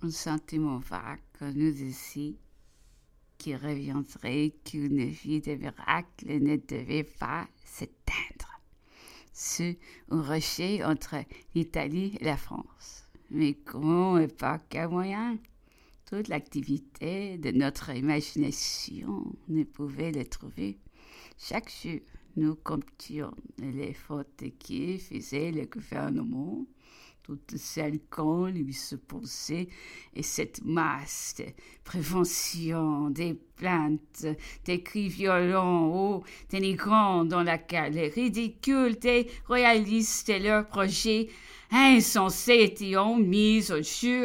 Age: 60-79